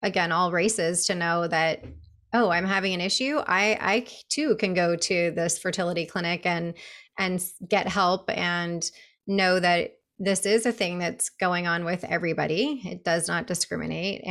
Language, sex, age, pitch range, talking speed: English, female, 20-39, 175-200 Hz, 170 wpm